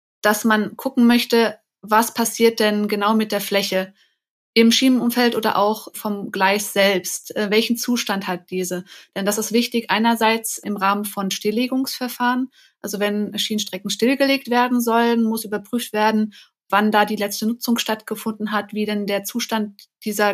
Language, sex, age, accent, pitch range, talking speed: German, female, 30-49, German, 200-235 Hz, 155 wpm